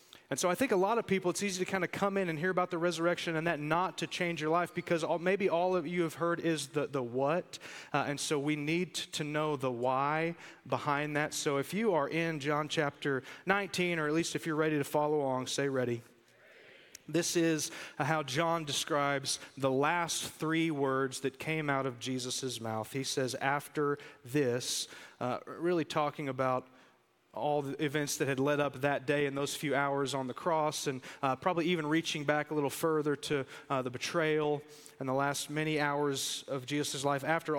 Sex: male